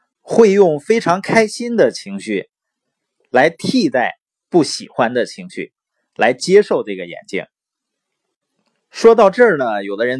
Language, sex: Chinese, male